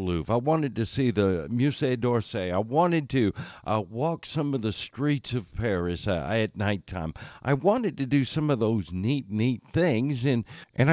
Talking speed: 180 wpm